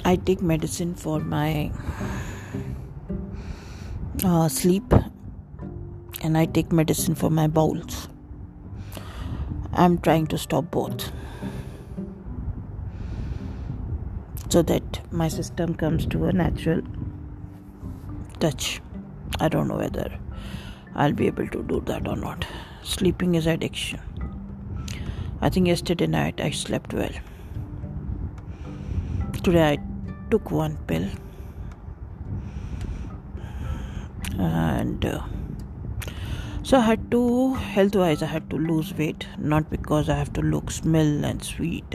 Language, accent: English, Indian